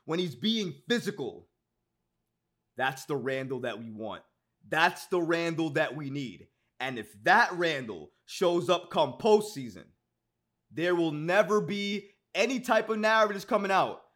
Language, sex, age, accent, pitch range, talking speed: English, male, 20-39, American, 150-200 Hz, 145 wpm